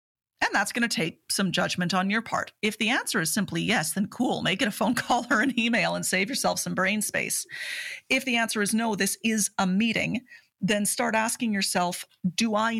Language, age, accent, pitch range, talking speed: English, 40-59, American, 195-245 Hz, 220 wpm